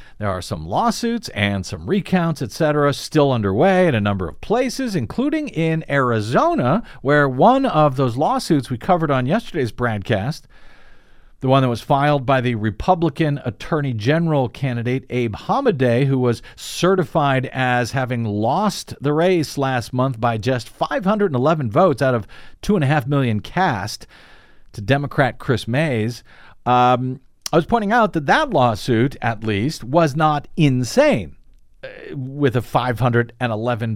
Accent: American